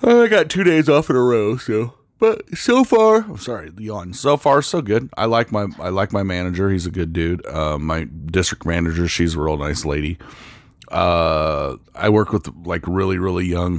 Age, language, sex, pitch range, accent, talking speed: 40-59, English, male, 85-105 Hz, American, 205 wpm